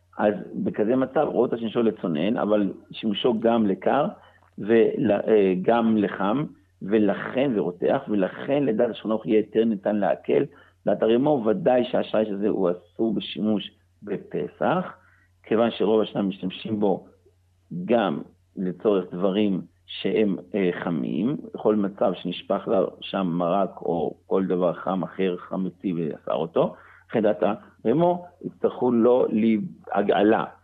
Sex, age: male, 60-79